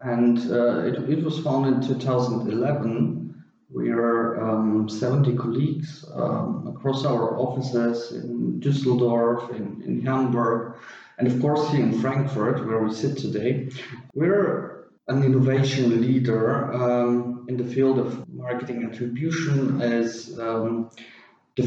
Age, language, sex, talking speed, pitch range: 40-59, English, male, 125 wpm, 115-135 Hz